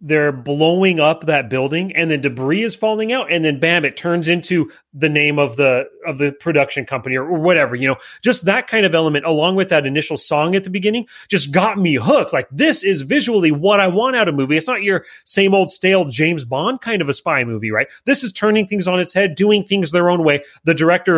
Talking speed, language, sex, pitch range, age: 245 wpm, English, male, 145-195 Hz, 30-49